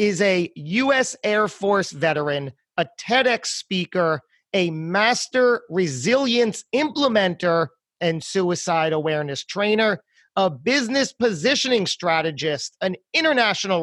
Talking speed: 100 wpm